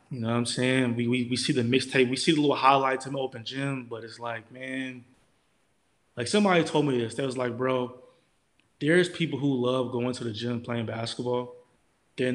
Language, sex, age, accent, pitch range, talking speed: English, male, 20-39, American, 115-135 Hz, 215 wpm